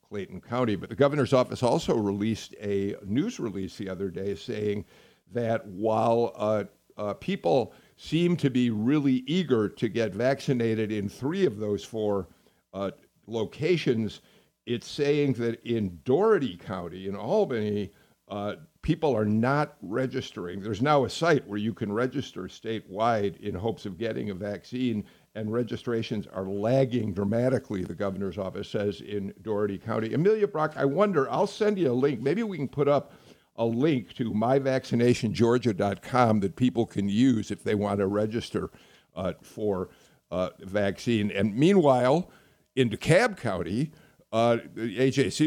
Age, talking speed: 50-69, 150 wpm